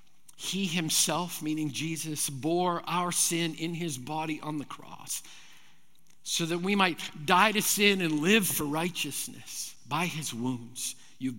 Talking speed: 150 wpm